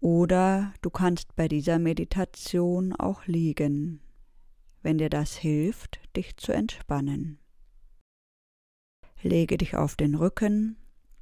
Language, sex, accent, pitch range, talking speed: German, female, German, 140-170 Hz, 105 wpm